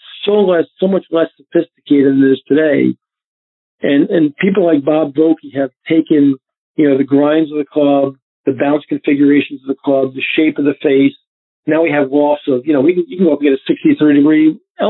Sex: male